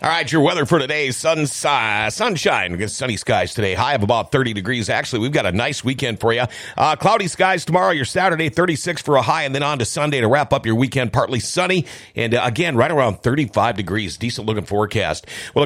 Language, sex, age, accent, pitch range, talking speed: English, male, 50-69, American, 115-155 Hz, 215 wpm